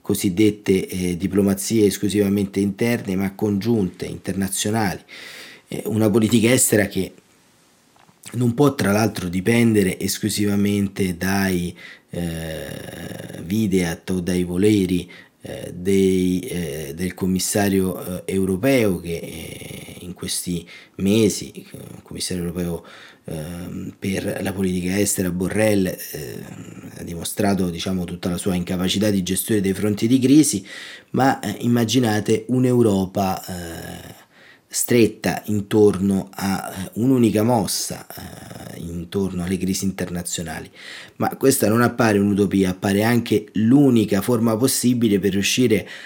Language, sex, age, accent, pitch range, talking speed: Italian, male, 30-49, native, 90-110 Hz, 110 wpm